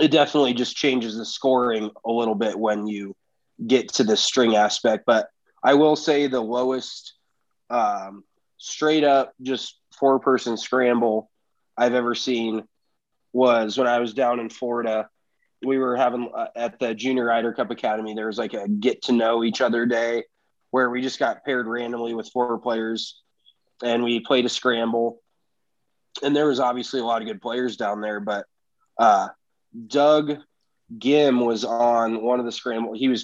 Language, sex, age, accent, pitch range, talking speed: English, male, 20-39, American, 115-130 Hz, 175 wpm